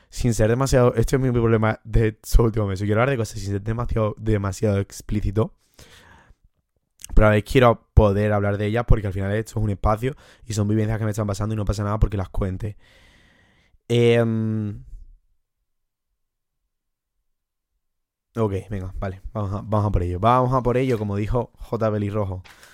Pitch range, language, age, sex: 105-120 Hz, Spanish, 20-39, male